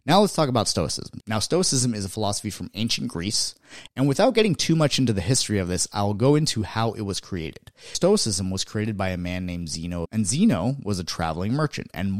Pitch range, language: 95-125 Hz, English